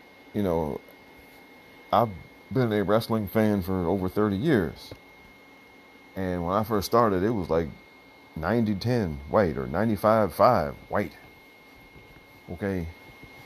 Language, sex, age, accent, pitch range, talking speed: English, male, 40-59, American, 80-105 Hz, 110 wpm